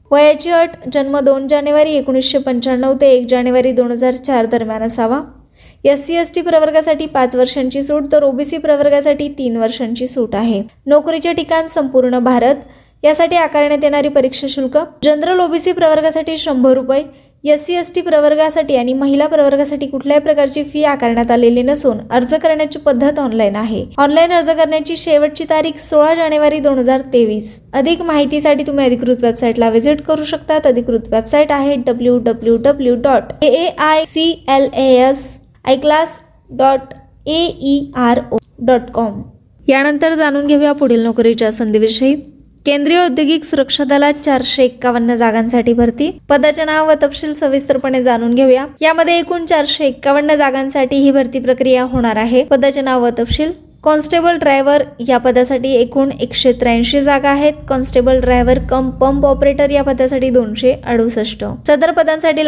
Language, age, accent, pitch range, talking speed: Marathi, 20-39, native, 255-300 Hz, 125 wpm